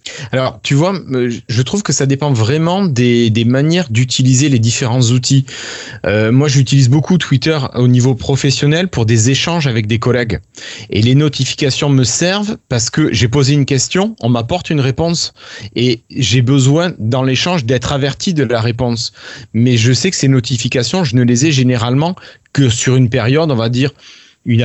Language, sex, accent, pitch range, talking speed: French, male, French, 120-150 Hz, 180 wpm